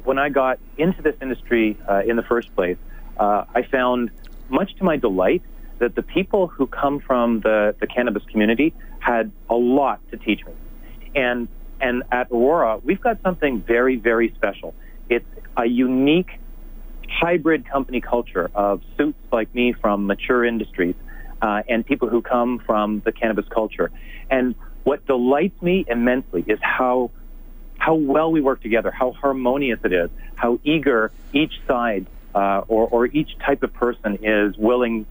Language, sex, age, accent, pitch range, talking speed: English, male, 40-59, American, 105-135 Hz, 160 wpm